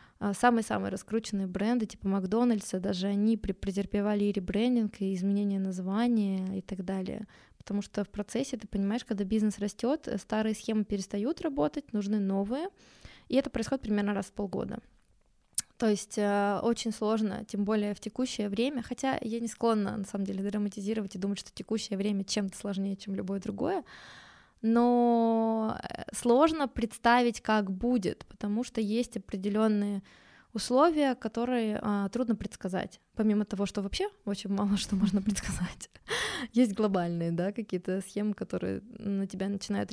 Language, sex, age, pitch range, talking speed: Russian, female, 20-39, 200-230 Hz, 145 wpm